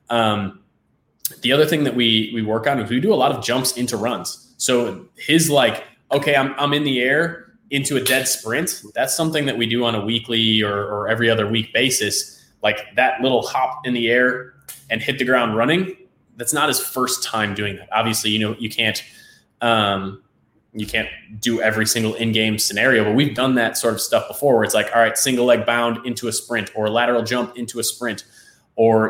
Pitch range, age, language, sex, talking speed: 110-125 Hz, 20-39, English, male, 210 wpm